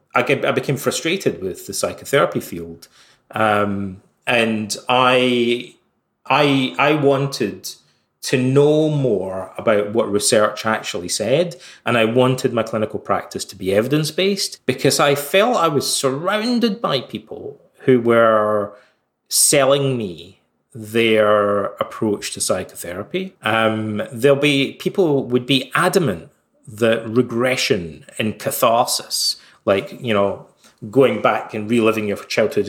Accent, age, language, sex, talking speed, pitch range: British, 30-49, English, male, 125 wpm, 105-135 Hz